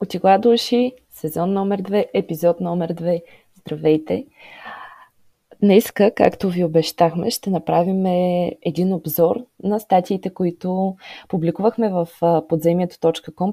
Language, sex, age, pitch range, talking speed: Bulgarian, female, 20-39, 170-210 Hz, 100 wpm